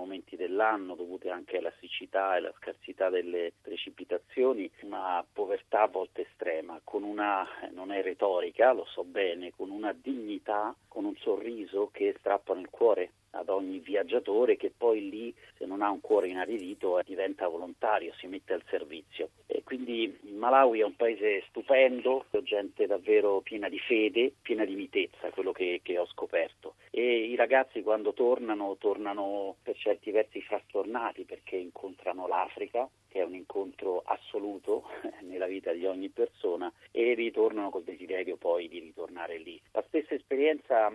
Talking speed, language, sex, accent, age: 155 wpm, Italian, male, native, 40-59